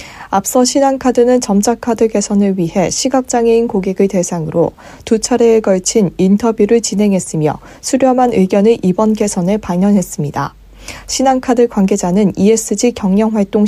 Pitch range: 190-235 Hz